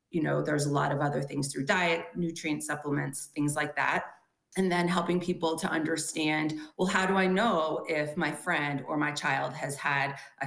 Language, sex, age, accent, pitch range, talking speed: English, female, 30-49, American, 140-165 Hz, 200 wpm